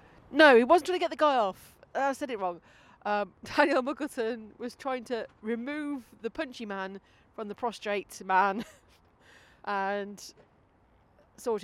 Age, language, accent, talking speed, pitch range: 30-49, English, British, 155 wpm, 195-260 Hz